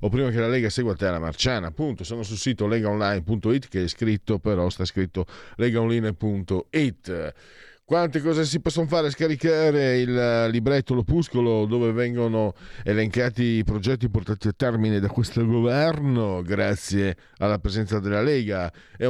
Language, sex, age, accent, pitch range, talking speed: Italian, male, 40-59, native, 85-115 Hz, 145 wpm